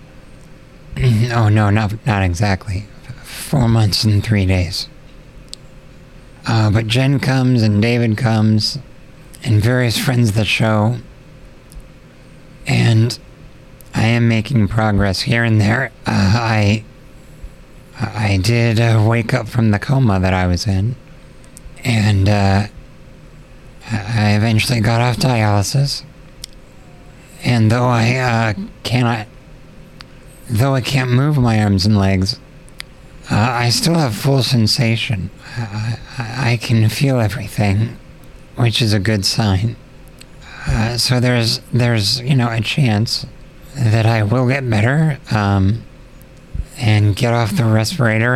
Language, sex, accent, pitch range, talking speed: English, male, American, 105-130 Hz, 125 wpm